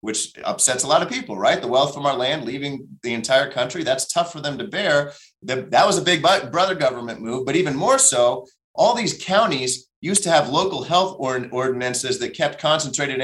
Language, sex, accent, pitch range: English, male, American, 125-165 Hz